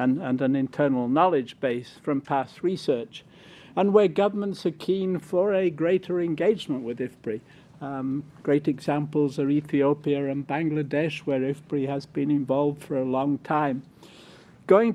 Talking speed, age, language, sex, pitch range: 145 wpm, 60-79, English, male, 140-175 Hz